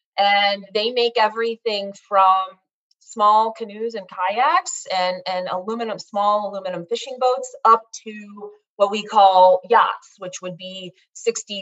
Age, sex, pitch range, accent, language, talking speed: 30-49, female, 195-240 Hz, American, English, 135 wpm